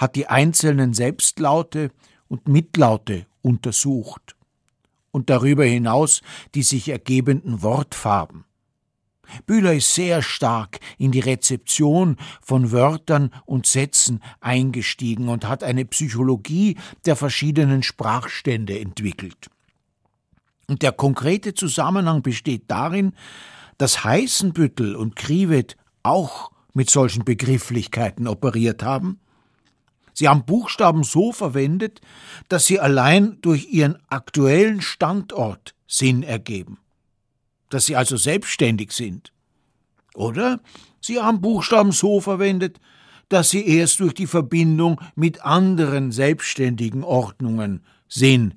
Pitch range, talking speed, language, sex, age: 120-165 Hz, 105 wpm, German, male, 60-79